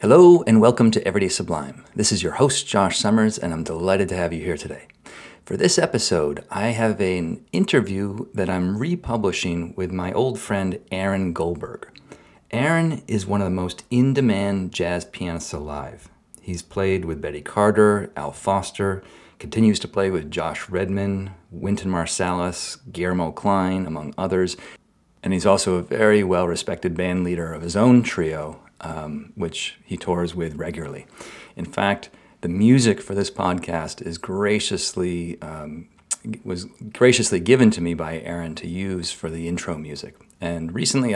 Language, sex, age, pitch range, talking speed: English, male, 40-59, 85-100 Hz, 155 wpm